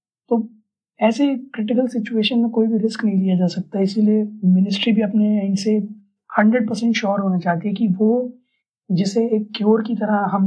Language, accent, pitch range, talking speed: Hindi, native, 175-210 Hz, 185 wpm